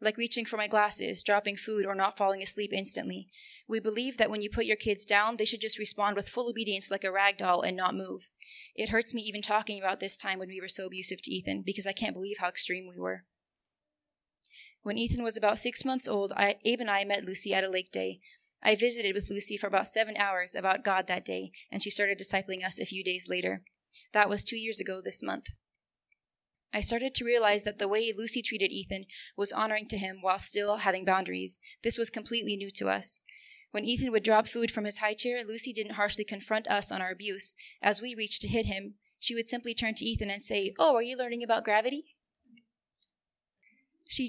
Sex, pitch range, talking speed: female, 195-225 Hz, 220 wpm